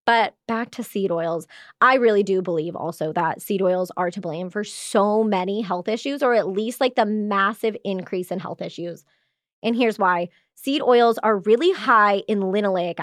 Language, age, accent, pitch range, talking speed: English, 20-39, American, 190-235 Hz, 190 wpm